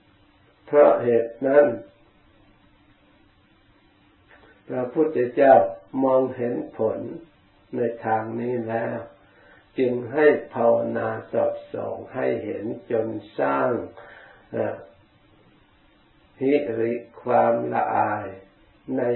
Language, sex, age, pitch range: Thai, male, 60-79, 105-130 Hz